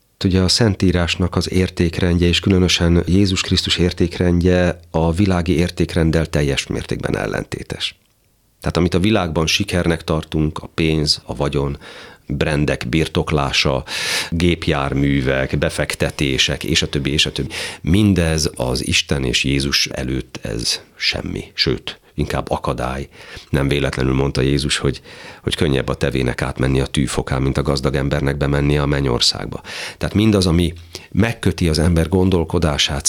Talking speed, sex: 130 wpm, male